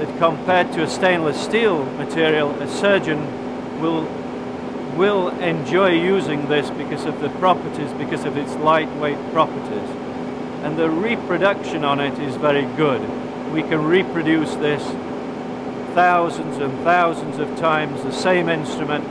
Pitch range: 140-170 Hz